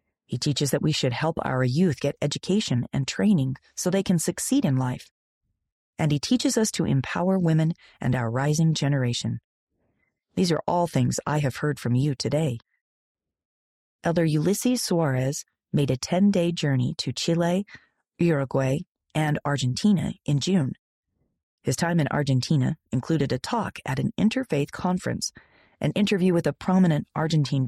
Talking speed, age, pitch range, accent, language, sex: 150 wpm, 40-59, 130-175 Hz, American, English, female